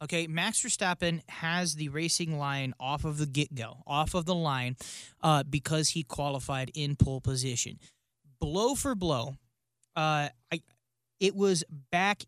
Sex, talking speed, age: male, 140 wpm, 30-49